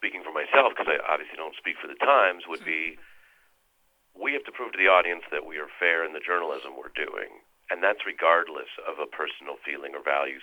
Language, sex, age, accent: English, male, 40-59, American